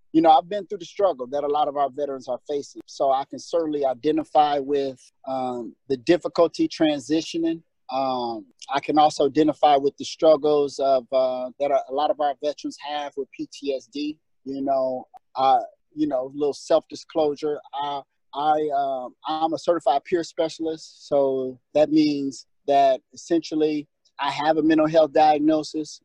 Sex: male